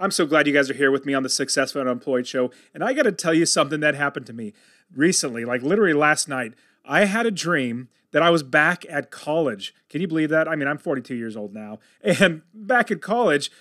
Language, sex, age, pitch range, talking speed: English, male, 30-49, 140-195 Hz, 240 wpm